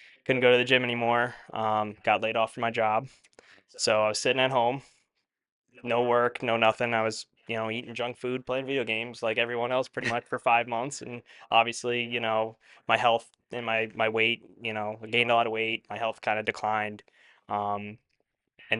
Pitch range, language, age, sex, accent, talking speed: 110-120 Hz, English, 10-29, male, American, 210 wpm